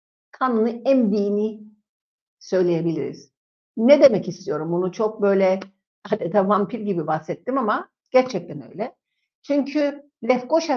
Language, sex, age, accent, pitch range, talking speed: Turkish, female, 60-79, native, 180-260 Hz, 95 wpm